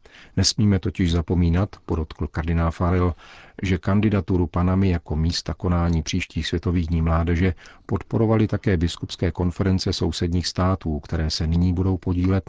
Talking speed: 130 wpm